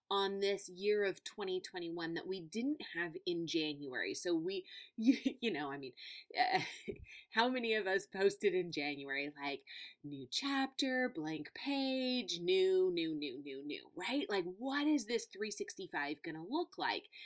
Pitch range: 170-280 Hz